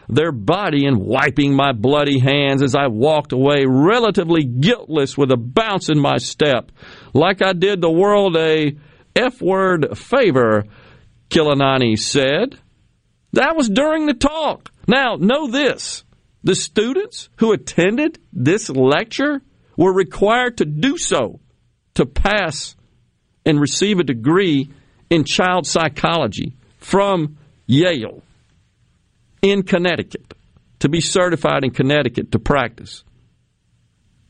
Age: 50-69